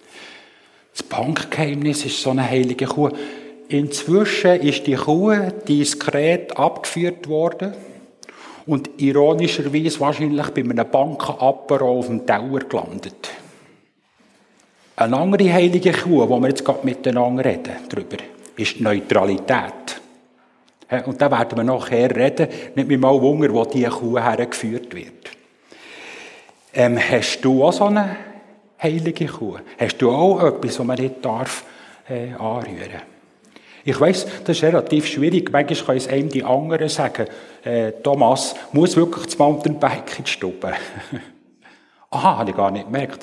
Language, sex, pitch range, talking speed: German, male, 125-165 Hz, 140 wpm